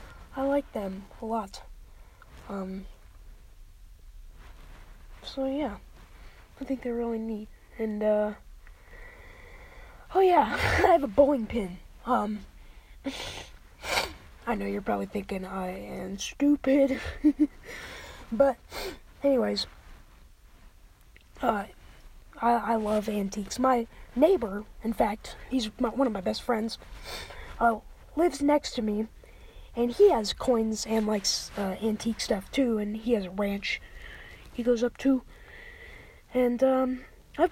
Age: 10-29